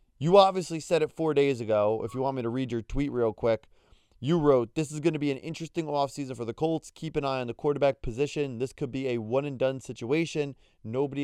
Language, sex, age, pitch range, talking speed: English, male, 20-39, 120-155 Hz, 235 wpm